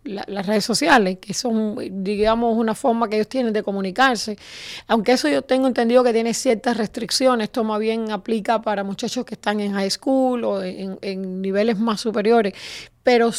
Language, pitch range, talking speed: Spanish, 215-255 Hz, 180 wpm